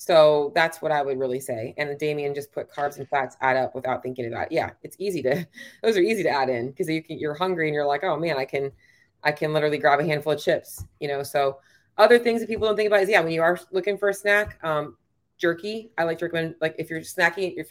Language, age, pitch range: English, 30-49, 150-185 Hz